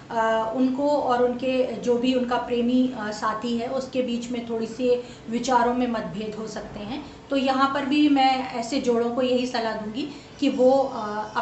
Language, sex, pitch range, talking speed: Hindi, female, 230-275 Hz, 190 wpm